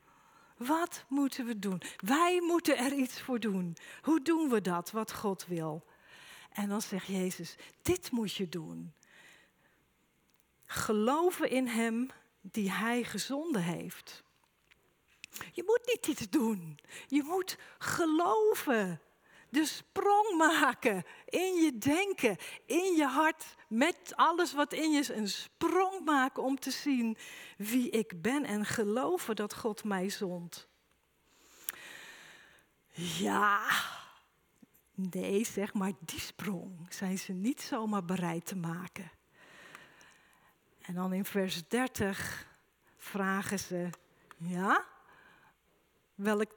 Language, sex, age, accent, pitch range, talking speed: Dutch, female, 40-59, Dutch, 200-295 Hz, 120 wpm